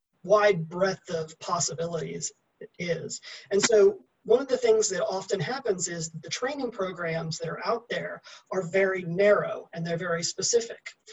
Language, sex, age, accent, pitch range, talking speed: English, male, 30-49, American, 165-215 Hz, 155 wpm